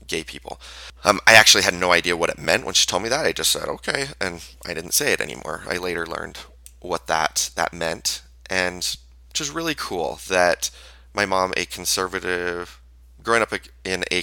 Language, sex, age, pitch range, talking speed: English, male, 30-49, 65-95 Hz, 200 wpm